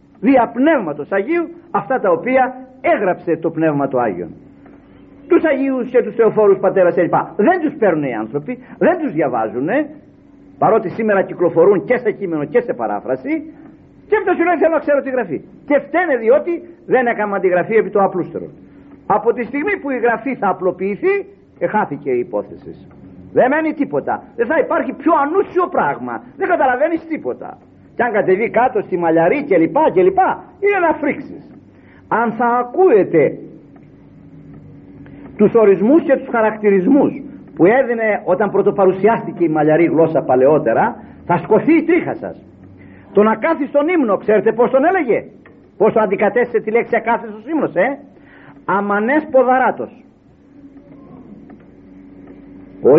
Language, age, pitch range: Greek, 50-69, 200-310 Hz